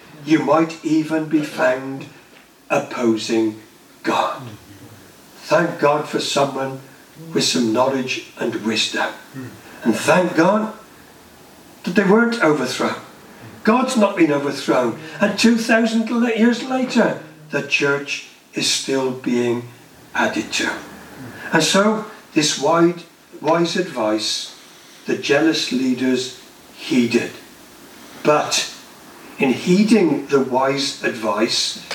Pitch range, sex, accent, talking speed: 135-190 Hz, male, British, 100 wpm